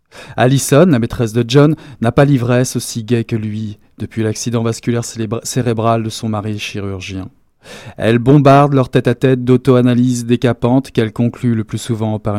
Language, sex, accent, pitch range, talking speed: French, male, French, 110-135 Hz, 170 wpm